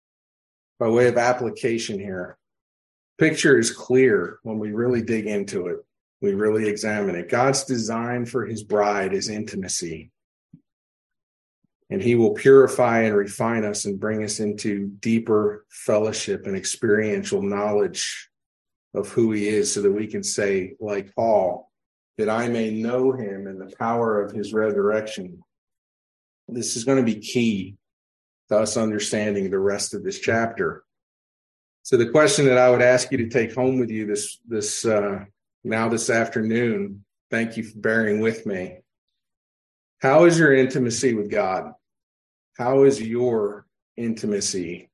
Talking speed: 150 wpm